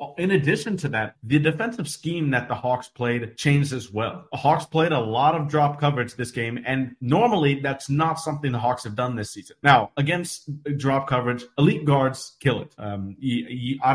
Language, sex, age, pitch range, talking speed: English, male, 30-49, 120-150 Hz, 195 wpm